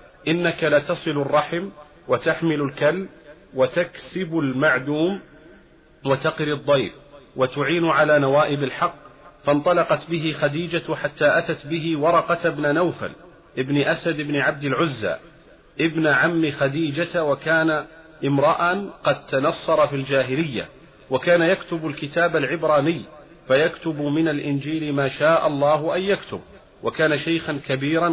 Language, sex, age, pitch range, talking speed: Arabic, male, 40-59, 145-165 Hz, 110 wpm